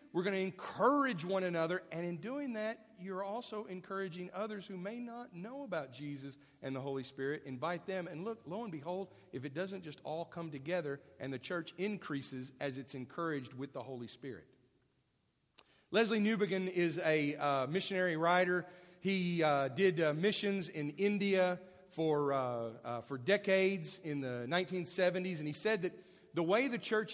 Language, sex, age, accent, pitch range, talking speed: English, male, 50-69, American, 145-190 Hz, 175 wpm